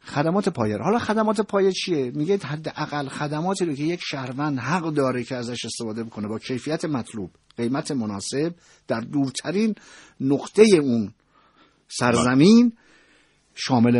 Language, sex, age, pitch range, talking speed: Persian, male, 50-69, 125-185 Hz, 130 wpm